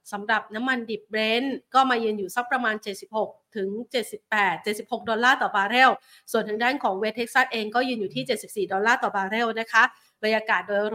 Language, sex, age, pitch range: Thai, female, 20-39, 205-245 Hz